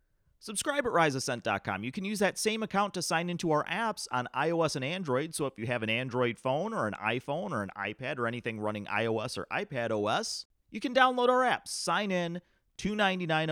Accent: American